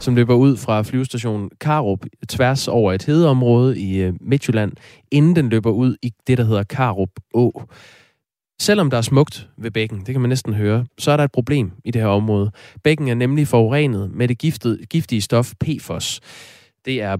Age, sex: 20-39, male